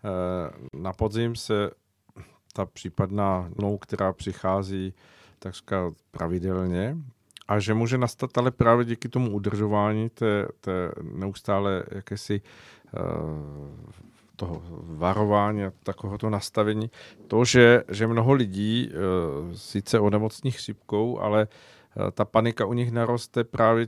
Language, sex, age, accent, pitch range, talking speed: Czech, male, 50-69, native, 95-110 Hz, 115 wpm